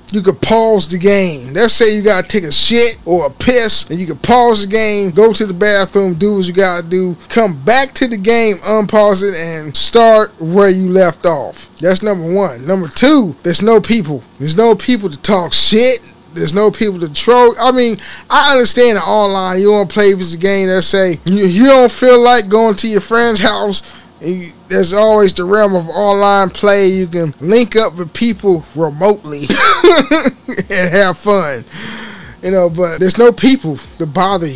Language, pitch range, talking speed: English, 170-215 Hz, 200 wpm